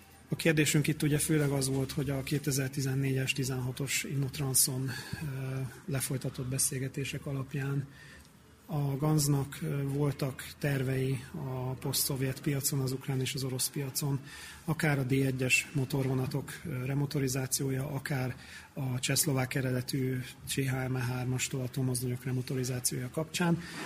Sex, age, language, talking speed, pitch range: male, 30-49, Hungarian, 100 wpm, 130-145 Hz